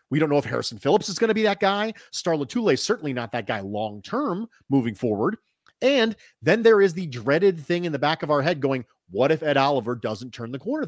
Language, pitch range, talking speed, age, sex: English, 145-215 Hz, 245 wpm, 30-49, male